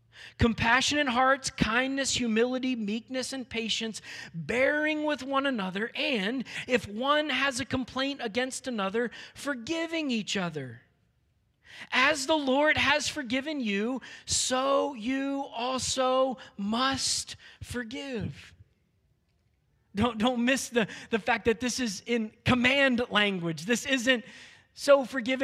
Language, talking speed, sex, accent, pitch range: English, 115 wpm, male, American, 195-280 Hz